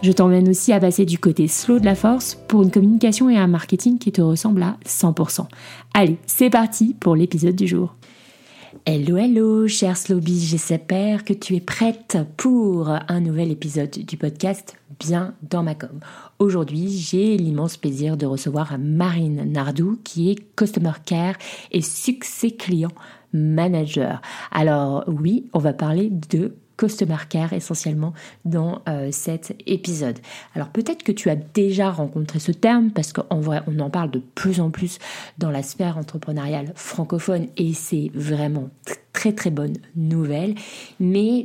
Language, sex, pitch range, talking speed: French, female, 155-195 Hz, 155 wpm